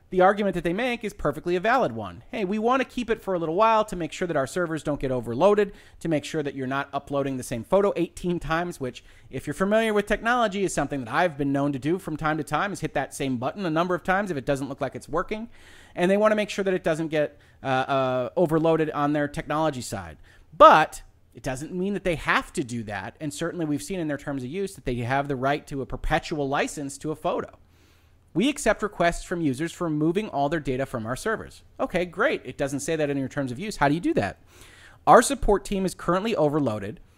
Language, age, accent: English, 30-49, American